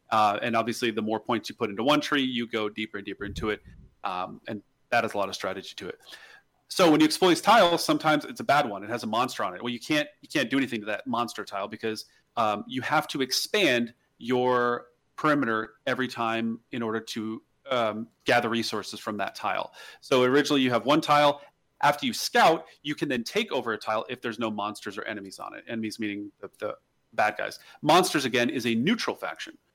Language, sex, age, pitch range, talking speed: English, male, 30-49, 110-145 Hz, 220 wpm